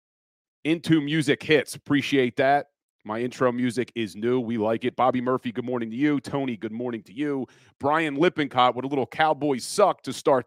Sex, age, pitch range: male, 40-59, 120-150 Hz